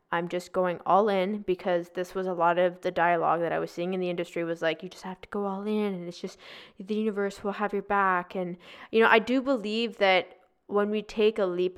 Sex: female